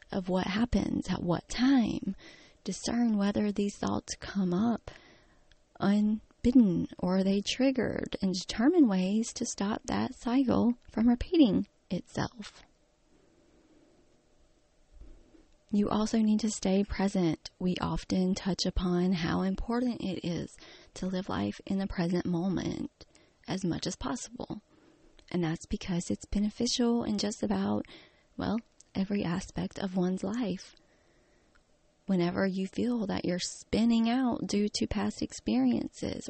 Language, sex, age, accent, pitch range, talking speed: English, female, 20-39, American, 185-240 Hz, 125 wpm